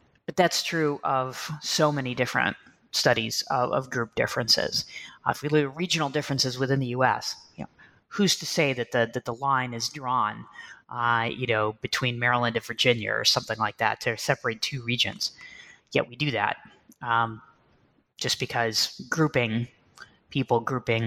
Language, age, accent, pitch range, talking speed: English, 30-49, American, 120-155 Hz, 170 wpm